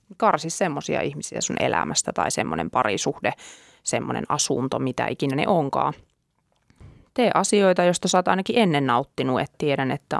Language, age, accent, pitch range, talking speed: Finnish, 20-39, native, 135-170 Hz, 145 wpm